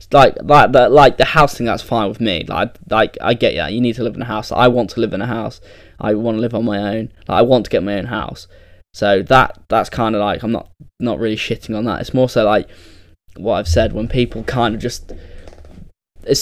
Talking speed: 260 wpm